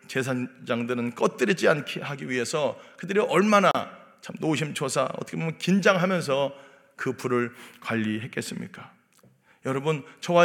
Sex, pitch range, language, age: male, 125-175 Hz, Korean, 40-59